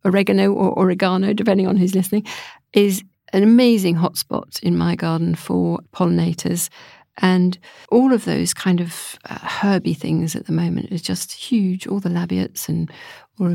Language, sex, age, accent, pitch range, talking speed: English, female, 50-69, British, 170-215 Hz, 160 wpm